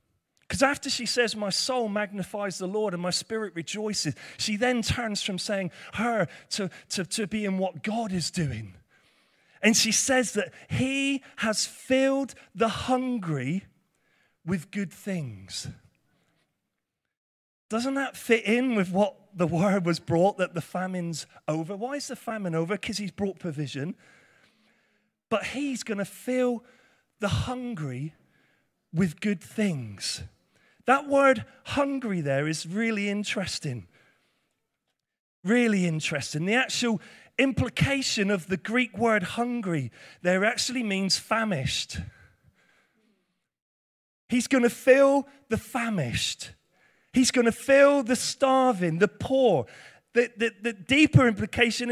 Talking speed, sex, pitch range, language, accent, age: 130 wpm, male, 185-250 Hz, English, British, 30-49